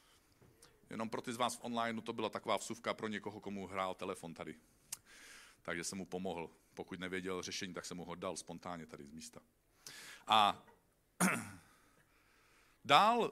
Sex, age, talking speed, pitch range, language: male, 40-59, 160 wpm, 95-140 Hz, Czech